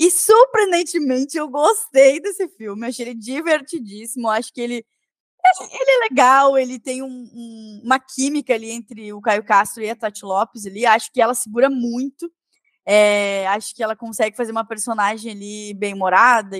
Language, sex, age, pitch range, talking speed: Portuguese, female, 10-29, 220-270 Hz, 170 wpm